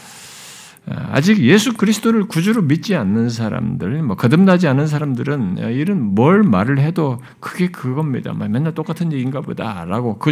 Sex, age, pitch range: male, 50-69, 130-180 Hz